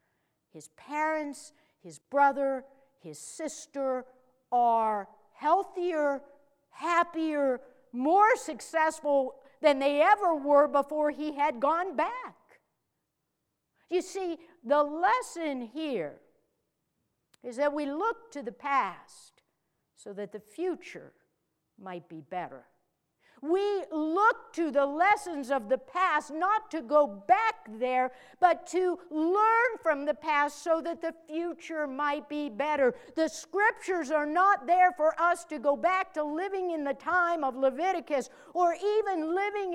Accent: American